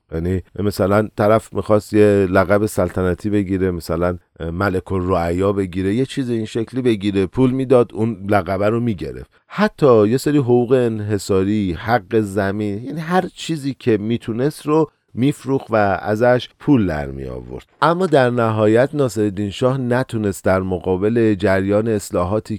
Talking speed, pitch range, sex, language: 140 wpm, 100-130 Hz, male, Persian